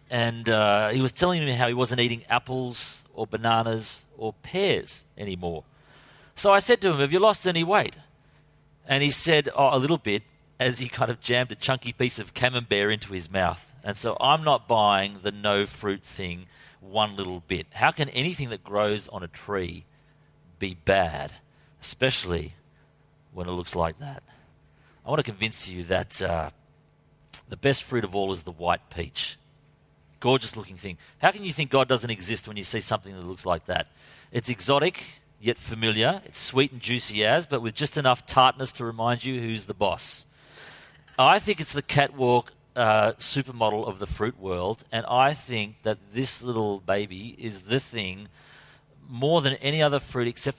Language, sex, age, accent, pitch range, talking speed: English, male, 40-59, Australian, 100-135 Hz, 185 wpm